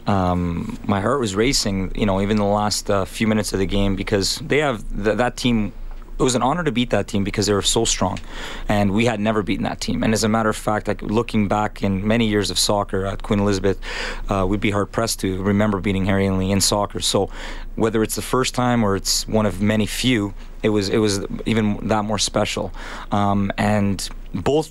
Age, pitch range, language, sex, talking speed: 30-49, 100-115 Hz, English, male, 230 wpm